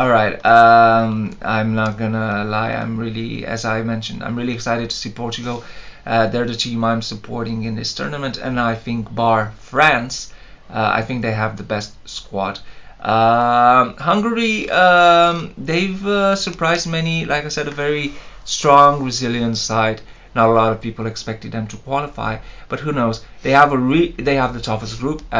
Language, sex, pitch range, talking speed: English, male, 110-125 Hz, 175 wpm